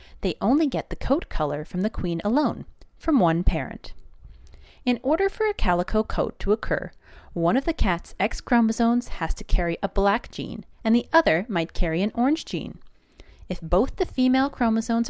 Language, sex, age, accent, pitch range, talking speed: English, female, 30-49, American, 165-265 Hz, 185 wpm